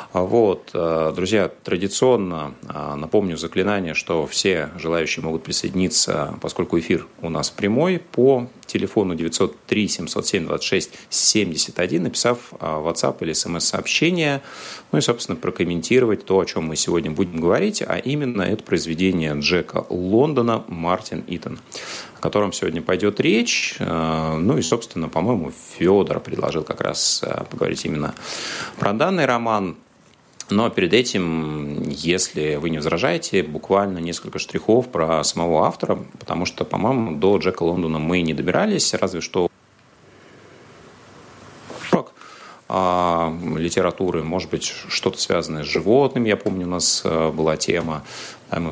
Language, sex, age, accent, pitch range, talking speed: Russian, male, 30-49, native, 80-100 Hz, 120 wpm